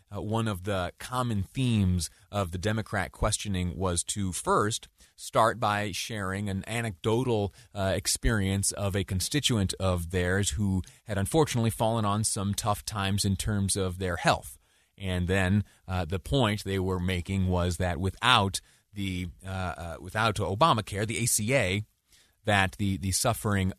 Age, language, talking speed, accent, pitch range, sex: 30-49, English, 150 wpm, American, 90-105 Hz, male